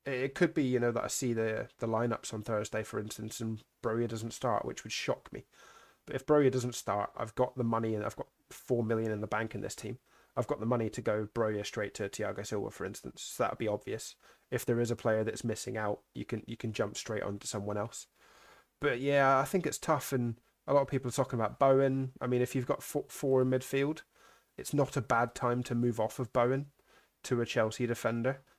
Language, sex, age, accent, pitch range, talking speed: English, male, 20-39, British, 110-130 Hz, 240 wpm